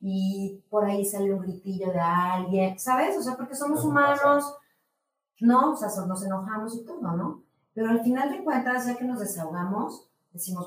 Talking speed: 185 wpm